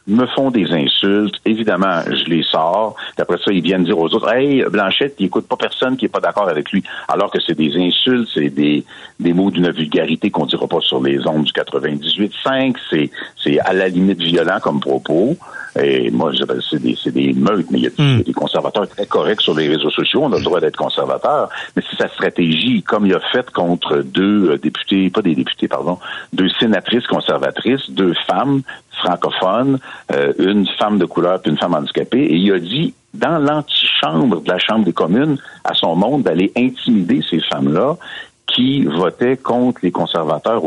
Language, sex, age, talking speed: French, male, 60-79, 195 wpm